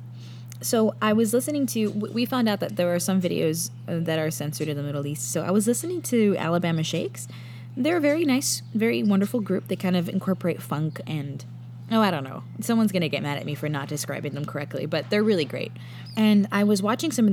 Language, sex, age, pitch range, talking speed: English, female, 20-39, 135-200 Hz, 220 wpm